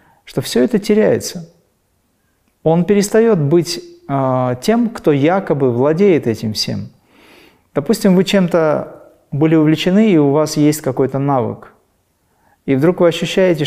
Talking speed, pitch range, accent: 125 wpm, 140-175 Hz, native